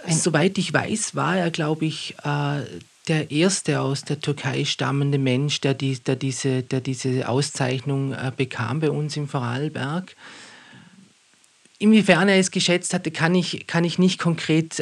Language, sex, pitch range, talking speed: German, male, 130-155 Hz, 160 wpm